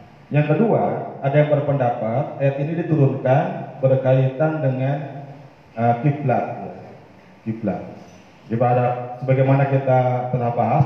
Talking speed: 90 wpm